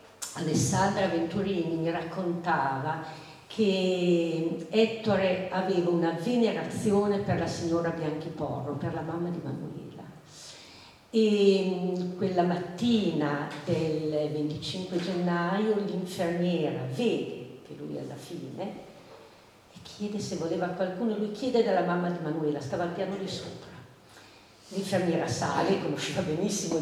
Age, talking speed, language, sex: 50-69, 115 wpm, Italian, female